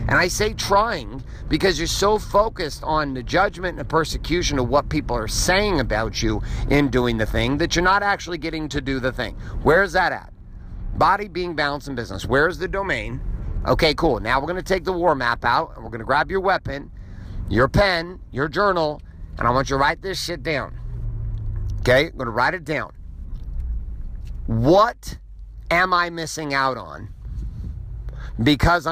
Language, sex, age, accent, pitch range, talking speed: English, male, 50-69, American, 105-165 Hz, 180 wpm